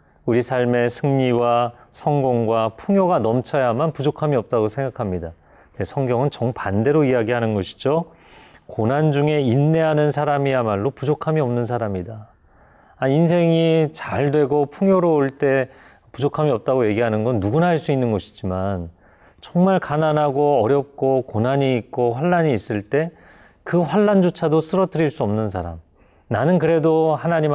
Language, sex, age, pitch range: Korean, male, 40-59, 105-155 Hz